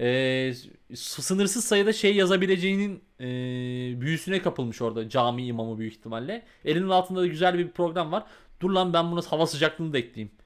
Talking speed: 160 wpm